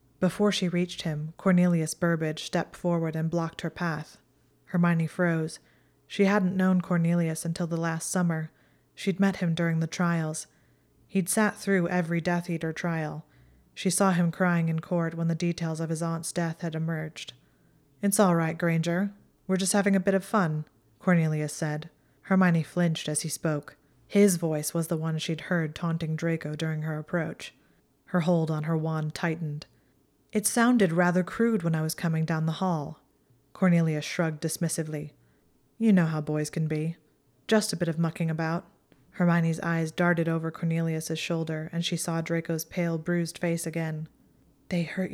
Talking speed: 170 wpm